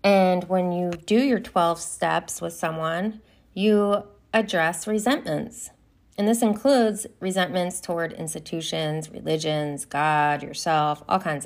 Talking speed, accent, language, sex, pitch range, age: 120 wpm, American, English, female, 160-210 Hz, 30-49